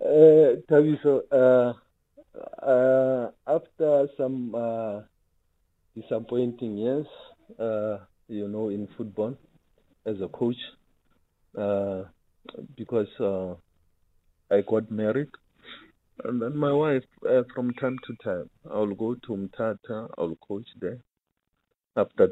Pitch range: 100-125 Hz